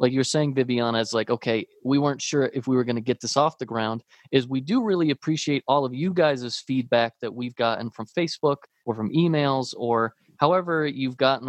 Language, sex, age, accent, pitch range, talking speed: English, male, 30-49, American, 120-155 Hz, 220 wpm